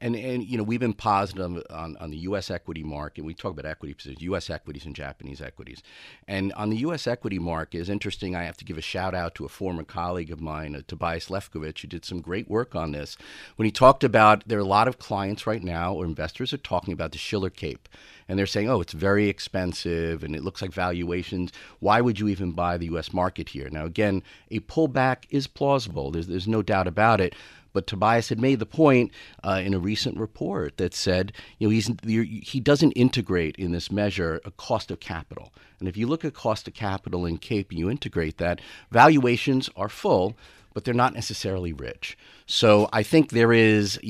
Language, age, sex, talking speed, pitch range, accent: English, 40-59, male, 215 wpm, 85-110 Hz, American